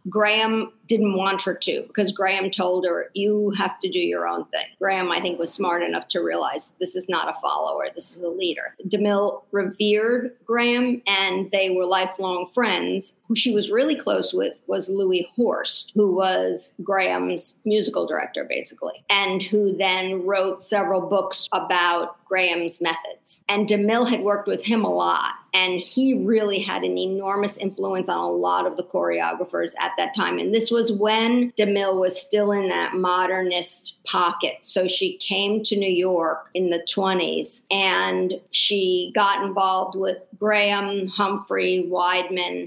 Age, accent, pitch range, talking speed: 50-69, American, 180-210 Hz, 165 wpm